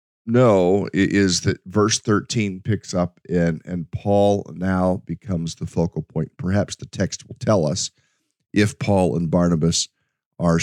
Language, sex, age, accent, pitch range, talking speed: English, male, 40-59, American, 85-105 Hz, 150 wpm